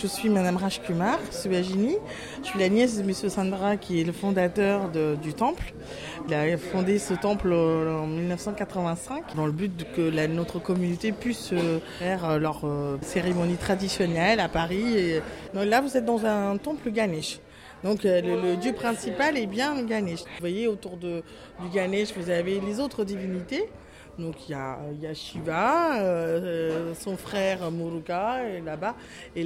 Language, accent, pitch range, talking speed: French, French, 165-220 Hz, 165 wpm